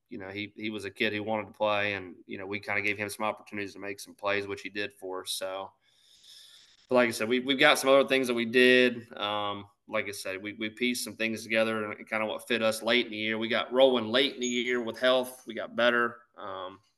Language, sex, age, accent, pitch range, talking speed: English, male, 20-39, American, 105-120 Hz, 270 wpm